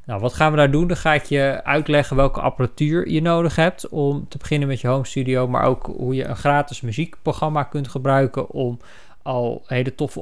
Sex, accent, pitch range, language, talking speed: male, Dutch, 120-155 Hz, Dutch, 210 wpm